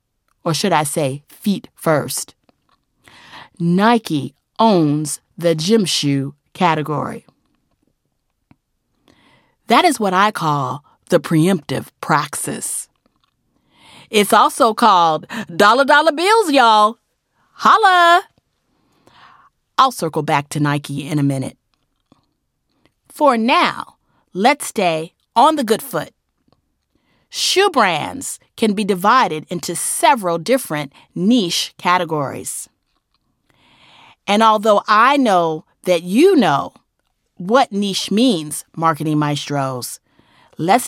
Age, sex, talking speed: 40-59, female, 95 wpm